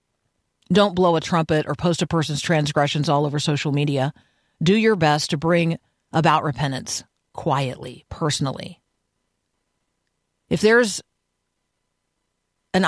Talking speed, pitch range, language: 115 wpm, 145-185 Hz, English